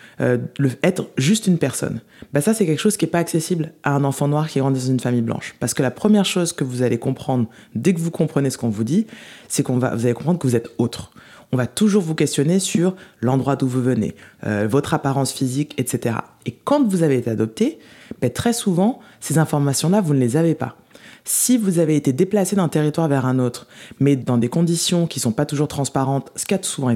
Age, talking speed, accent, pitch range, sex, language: 20-39, 240 wpm, French, 125-175 Hz, female, French